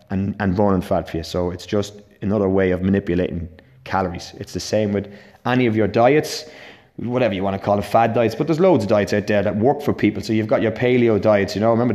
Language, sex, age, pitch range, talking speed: English, male, 30-49, 105-135 Hz, 245 wpm